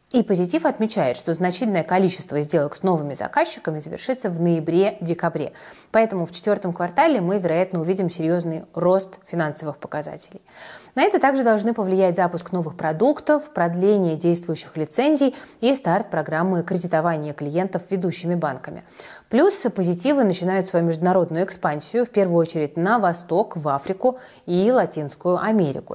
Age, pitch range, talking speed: 30-49, 165-200 Hz, 135 wpm